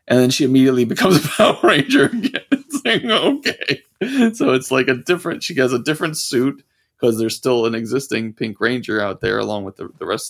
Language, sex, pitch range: English, male, 115-140 Hz